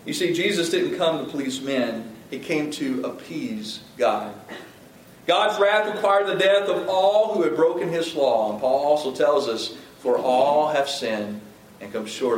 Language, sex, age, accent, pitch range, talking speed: English, male, 40-59, American, 115-190 Hz, 180 wpm